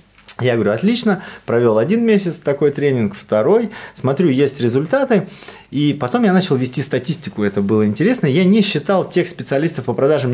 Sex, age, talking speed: male, 20-39, 165 wpm